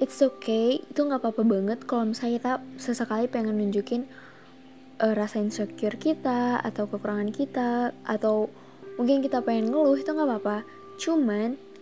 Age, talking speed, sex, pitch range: 20-39, 140 wpm, female, 210-265 Hz